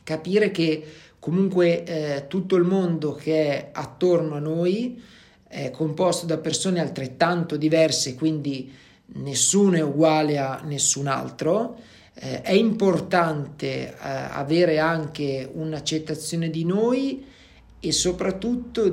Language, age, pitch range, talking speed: Italian, 40-59, 155-175 Hz, 115 wpm